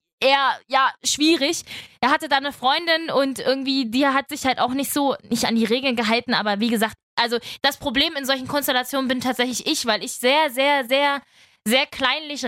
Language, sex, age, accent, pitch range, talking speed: German, female, 20-39, German, 240-285 Hz, 195 wpm